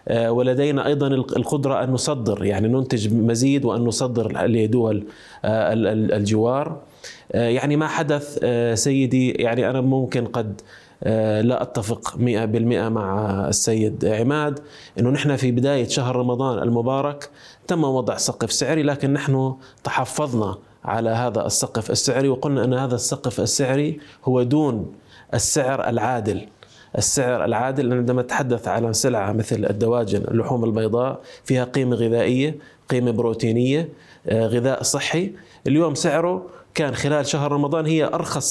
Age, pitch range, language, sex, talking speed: 20-39, 120-155 Hz, Arabic, male, 120 wpm